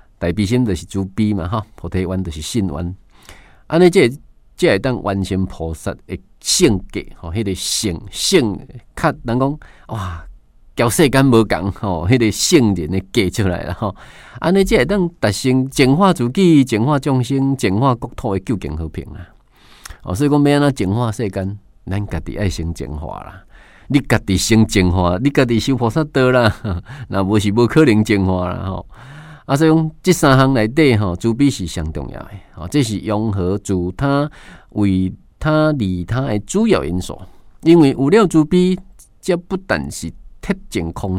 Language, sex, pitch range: Chinese, male, 90-135 Hz